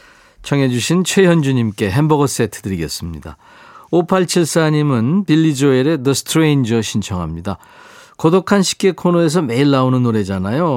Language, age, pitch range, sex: Korean, 40-59, 115-175 Hz, male